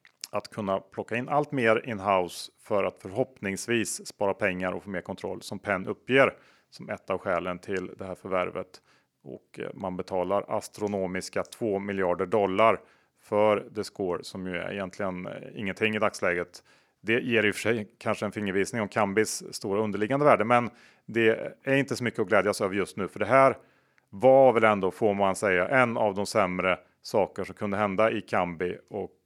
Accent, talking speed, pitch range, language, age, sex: Norwegian, 185 wpm, 95-120 Hz, Swedish, 30-49, male